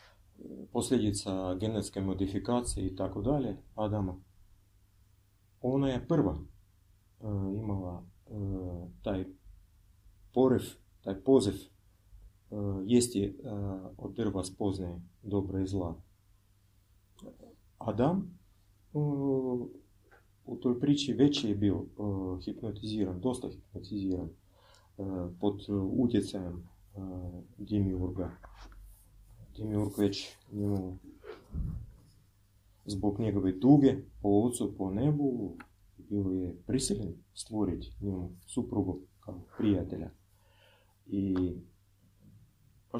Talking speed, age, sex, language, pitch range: 80 wpm, 40-59, male, Croatian, 95-110 Hz